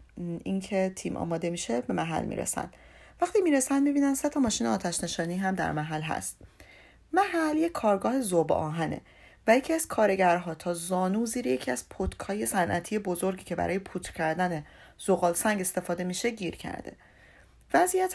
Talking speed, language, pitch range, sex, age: 160 wpm, Persian, 175-250 Hz, female, 40-59